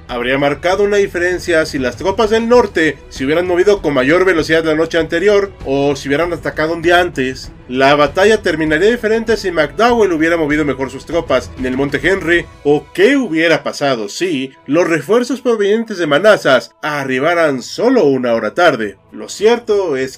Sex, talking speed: male, 170 wpm